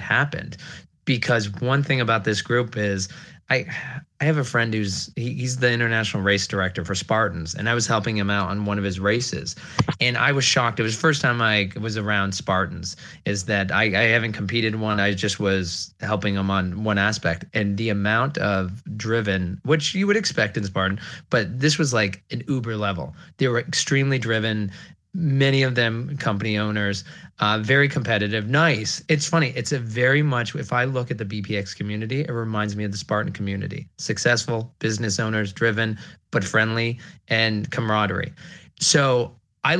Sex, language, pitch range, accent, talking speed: male, English, 100-130 Hz, American, 185 wpm